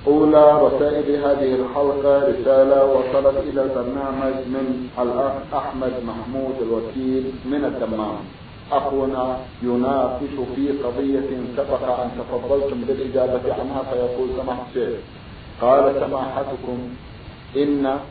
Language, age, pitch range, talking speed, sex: Arabic, 50-69, 130-140 Hz, 95 wpm, male